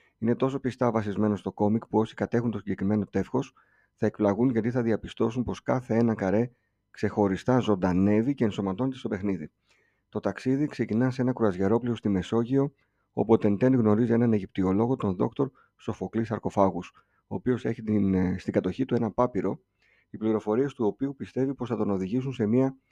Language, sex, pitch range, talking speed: Greek, male, 100-120 Hz, 170 wpm